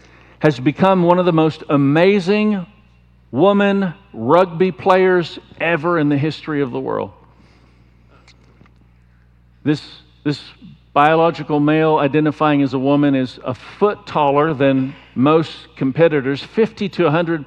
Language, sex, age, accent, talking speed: English, male, 50-69, American, 120 wpm